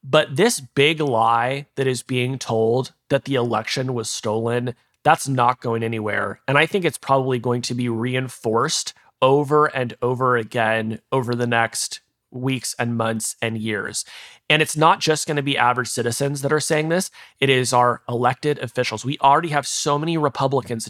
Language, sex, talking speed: English, male, 180 wpm